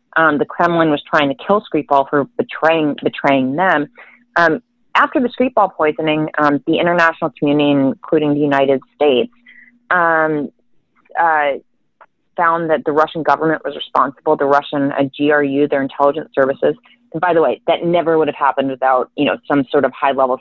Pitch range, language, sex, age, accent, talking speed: 145-180 Hz, English, female, 30-49, American, 170 wpm